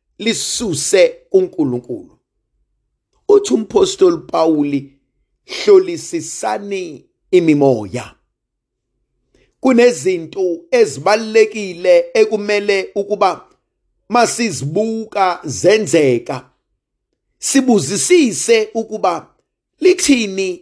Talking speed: 50 wpm